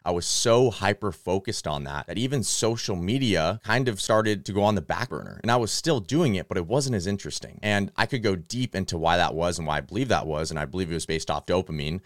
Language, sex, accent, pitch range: English, male, American, 80-105 Hz